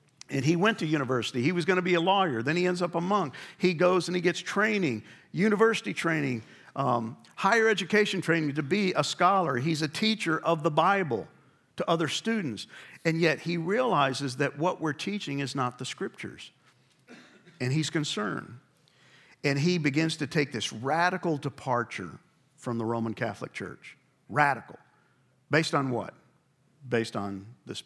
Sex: male